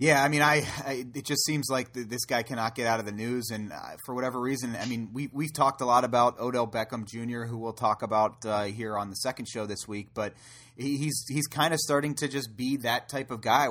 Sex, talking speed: male, 265 wpm